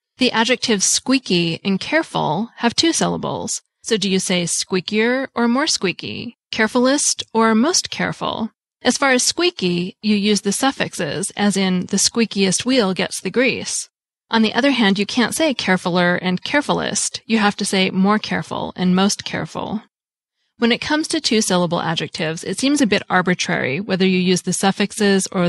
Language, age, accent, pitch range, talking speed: English, 30-49, American, 185-235 Hz, 170 wpm